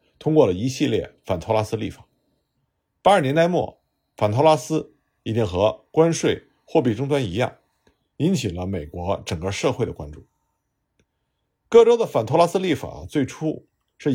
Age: 50-69